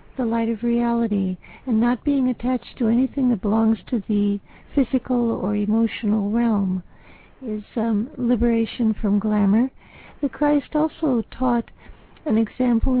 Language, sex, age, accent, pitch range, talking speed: English, female, 60-79, American, 215-255 Hz, 135 wpm